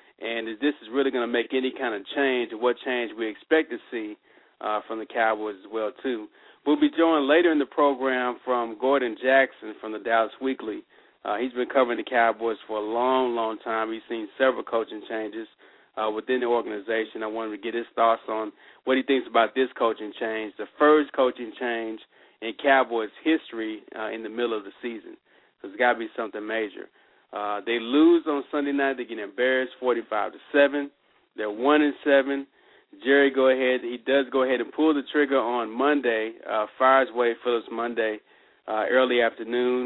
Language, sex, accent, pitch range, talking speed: English, male, American, 115-135 Hz, 200 wpm